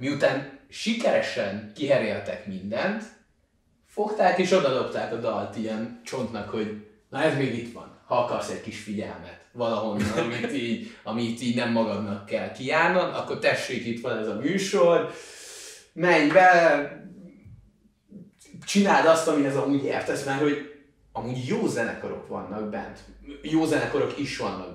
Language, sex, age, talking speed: Hungarian, male, 30-49, 140 wpm